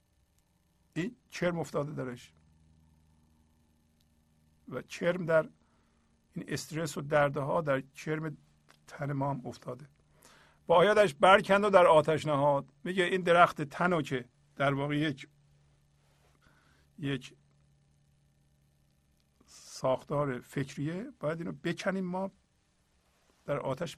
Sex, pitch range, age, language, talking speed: male, 130-175 Hz, 50-69, Persian, 100 wpm